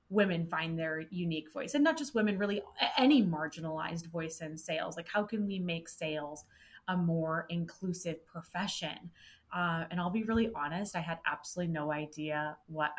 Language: English